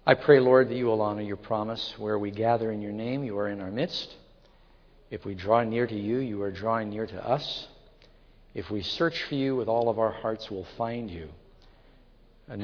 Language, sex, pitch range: English, male, 105-120 Hz